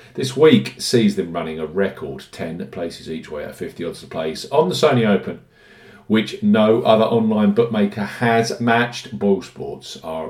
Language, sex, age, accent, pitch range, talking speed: English, male, 50-69, British, 100-130 Hz, 175 wpm